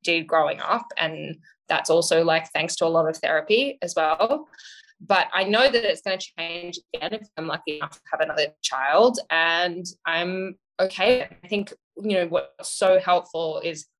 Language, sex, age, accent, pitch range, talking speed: English, female, 10-29, Australian, 170-215 Hz, 185 wpm